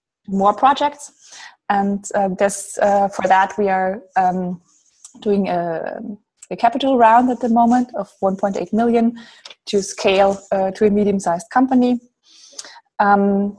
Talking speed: 135 wpm